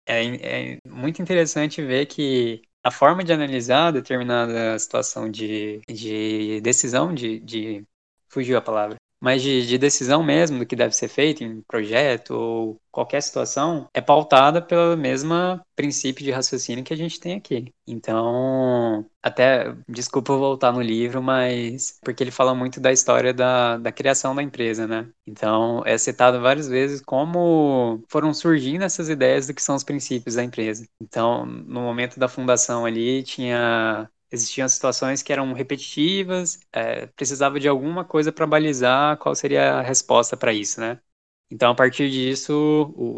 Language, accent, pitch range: Portuguese, Brazilian, 115-145 Hz